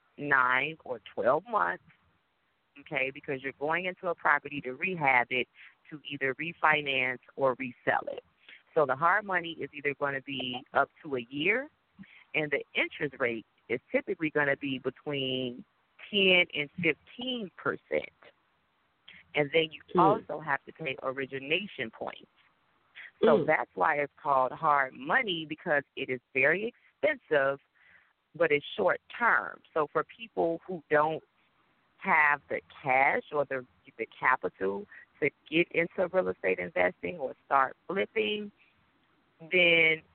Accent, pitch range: American, 130-165 Hz